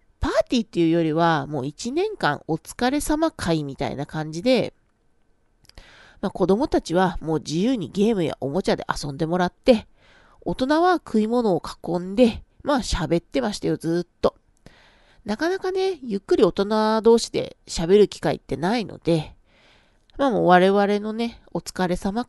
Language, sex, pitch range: Japanese, female, 170-250 Hz